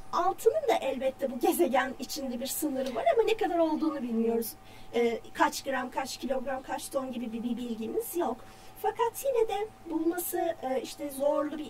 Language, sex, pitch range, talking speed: Turkish, female, 265-360 Hz, 160 wpm